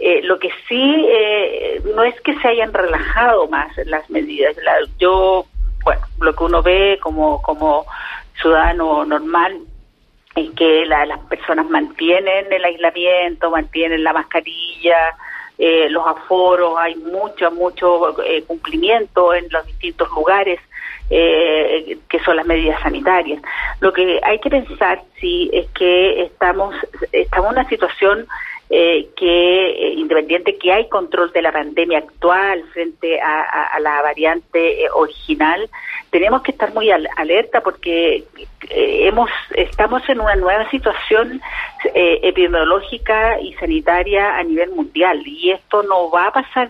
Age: 40-59